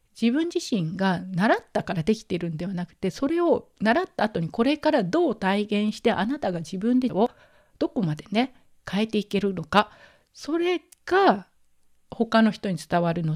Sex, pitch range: female, 185-245 Hz